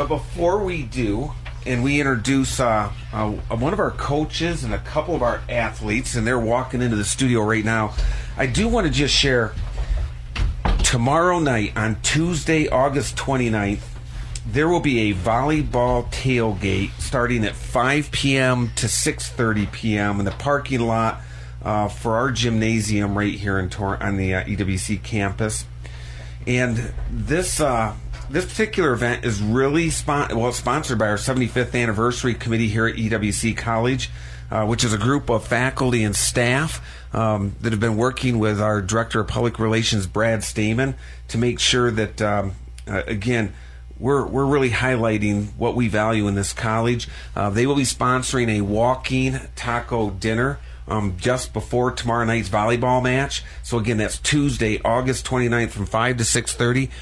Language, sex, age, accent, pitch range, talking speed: English, male, 40-59, American, 105-125 Hz, 160 wpm